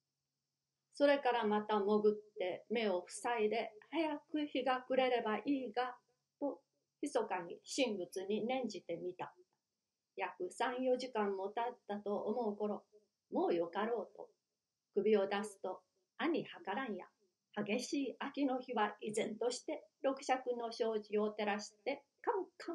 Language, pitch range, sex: Japanese, 215-270 Hz, female